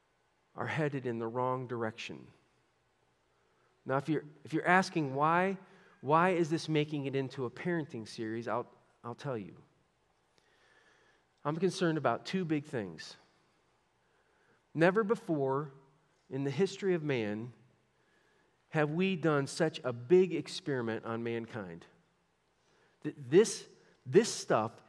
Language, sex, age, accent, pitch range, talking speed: English, male, 40-59, American, 140-195 Hz, 120 wpm